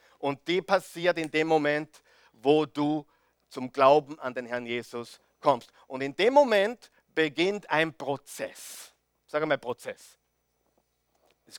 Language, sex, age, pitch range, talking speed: German, male, 50-69, 150-205 Hz, 135 wpm